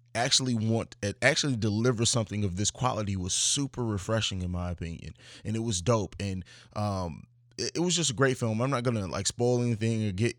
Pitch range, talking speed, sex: 100-120 Hz, 200 wpm, male